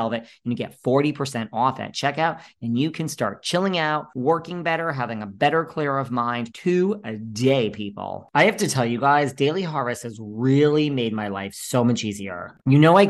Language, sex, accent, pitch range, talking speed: English, male, American, 115-145 Hz, 200 wpm